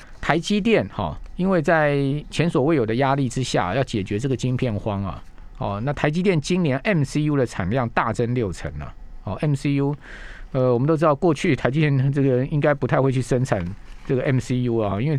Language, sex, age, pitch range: Chinese, male, 50-69, 120-155 Hz